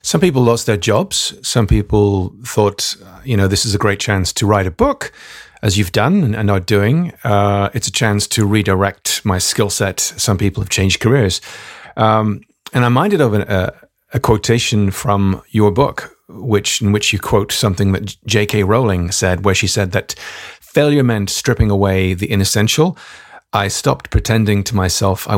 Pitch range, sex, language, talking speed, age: 100-115 Hz, male, English, 175 wpm, 40-59